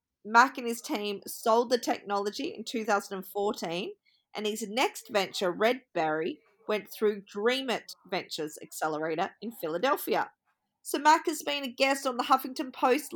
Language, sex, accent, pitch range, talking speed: English, female, Australian, 200-245 Hz, 140 wpm